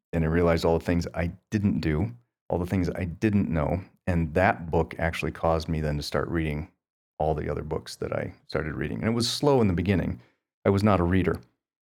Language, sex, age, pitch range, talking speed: English, male, 40-59, 80-95 Hz, 230 wpm